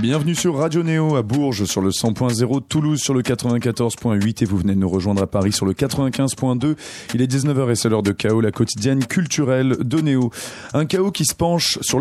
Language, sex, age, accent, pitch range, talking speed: French, male, 30-49, French, 110-140 Hz, 215 wpm